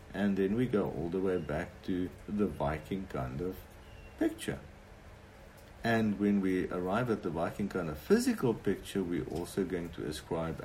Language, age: English, 50-69